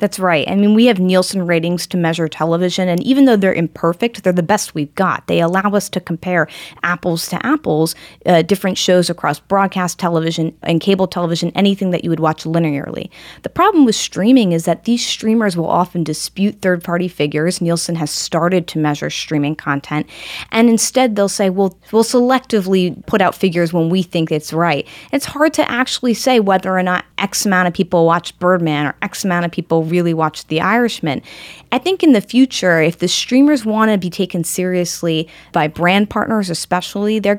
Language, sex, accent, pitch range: English, female, American, 170-210 Hz